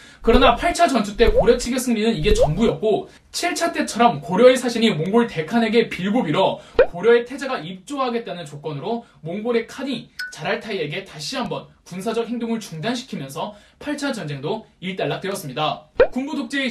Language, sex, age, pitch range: Korean, male, 20-39, 200-275 Hz